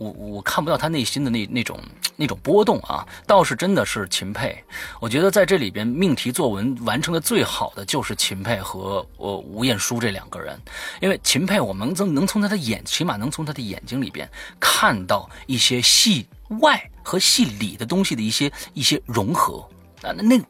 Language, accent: Chinese, native